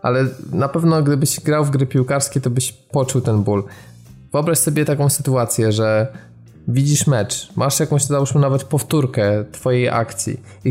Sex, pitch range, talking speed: male, 115-135 Hz, 155 wpm